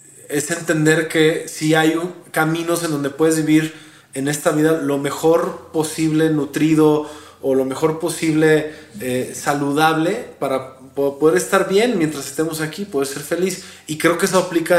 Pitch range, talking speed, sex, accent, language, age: 130-155 Hz, 160 wpm, male, Mexican, Spanish, 20-39